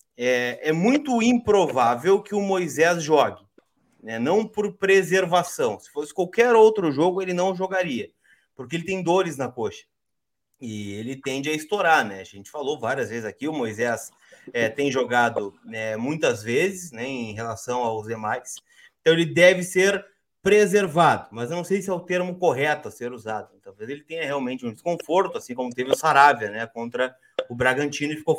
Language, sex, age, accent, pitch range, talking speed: Portuguese, male, 30-49, Brazilian, 120-175 Hz, 180 wpm